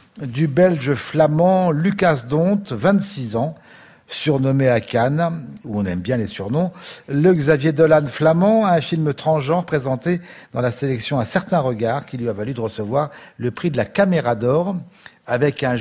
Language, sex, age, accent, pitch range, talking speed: French, male, 50-69, French, 115-165 Hz, 170 wpm